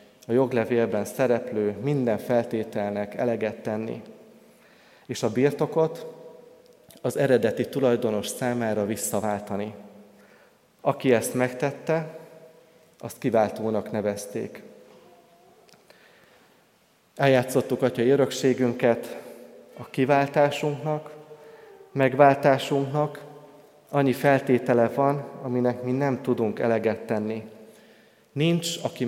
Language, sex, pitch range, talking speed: Hungarian, male, 115-145 Hz, 80 wpm